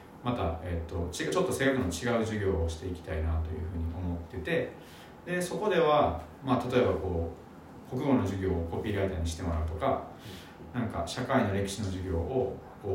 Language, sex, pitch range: Japanese, male, 85-125 Hz